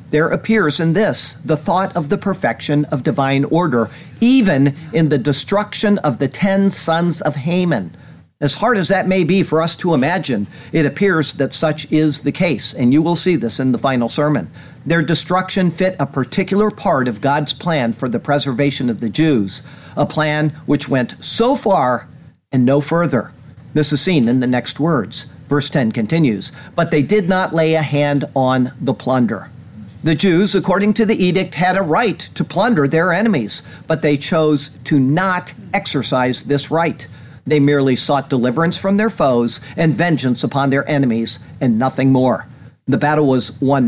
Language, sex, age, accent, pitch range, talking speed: English, male, 50-69, American, 135-180 Hz, 180 wpm